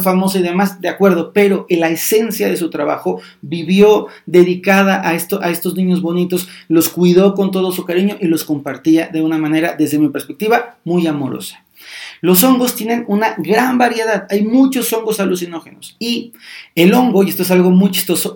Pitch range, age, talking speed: 165-195 Hz, 40-59, 185 wpm